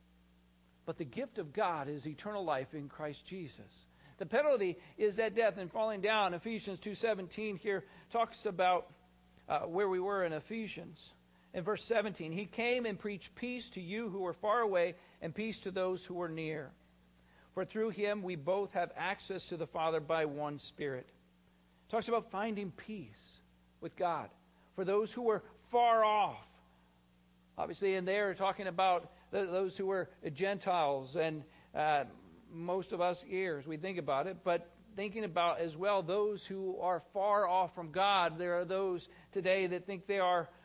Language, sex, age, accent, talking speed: English, male, 50-69, American, 170 wpm